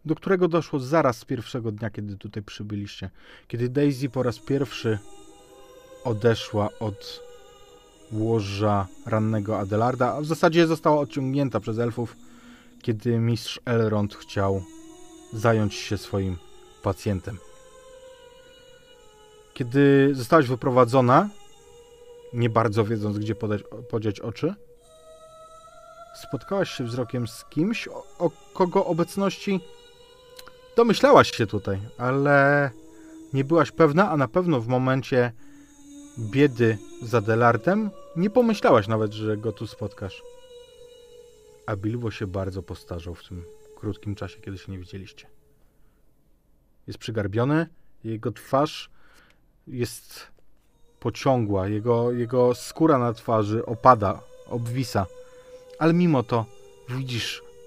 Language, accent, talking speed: Polish, native, 110 wpm